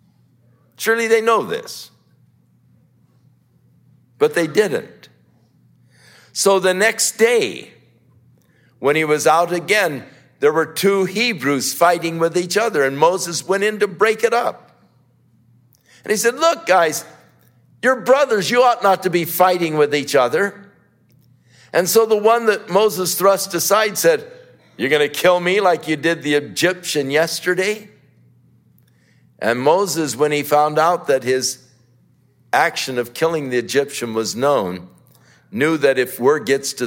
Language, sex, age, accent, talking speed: English, male, 60-79, American, 145 wpm